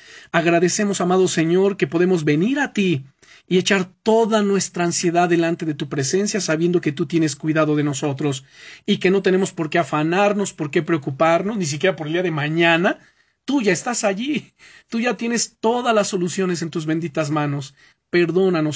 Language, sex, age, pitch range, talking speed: Spanish, male, 40-59, 155-190 Hz, 180 wpm